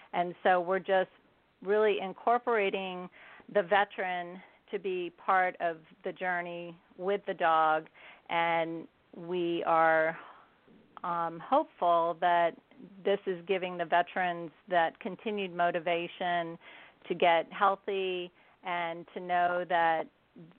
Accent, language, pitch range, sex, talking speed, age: American, English, 170-190 Hz, female, 110 wpm, 40-59